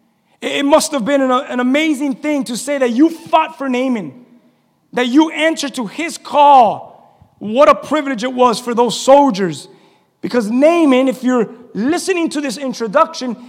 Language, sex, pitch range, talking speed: English, male, 240-305 Hz, 160 wpm